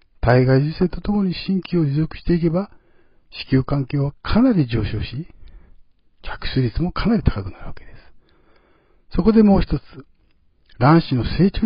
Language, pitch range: Japanese, 120-185 Hz